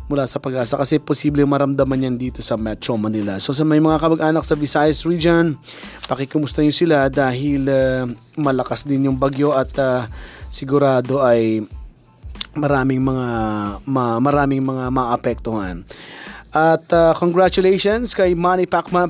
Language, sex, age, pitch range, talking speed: Filipino, male, 20-39, 135-165 Hz, 140 wpm